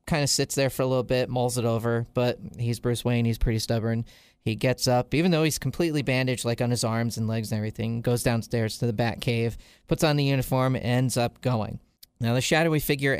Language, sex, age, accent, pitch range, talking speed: English, male, 40-59, American, 115-135 Hz, 225 wpm